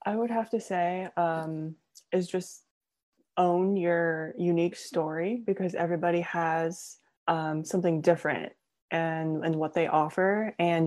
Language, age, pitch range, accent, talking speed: English, 20-39, 165-190 Hz, American, 135 wpm